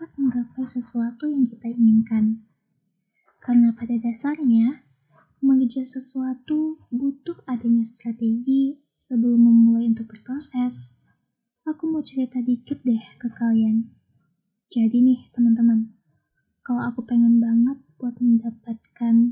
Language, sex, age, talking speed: Indonesian, female, 20-39, 100 wpm